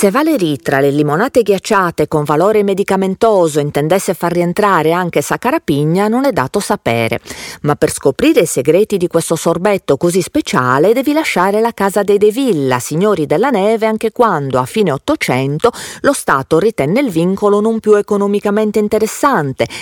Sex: female